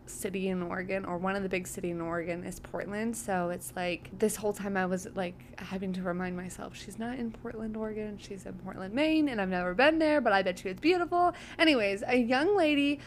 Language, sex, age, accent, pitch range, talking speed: English, female, 20-39, American, 205-305 Hz, 230 wpm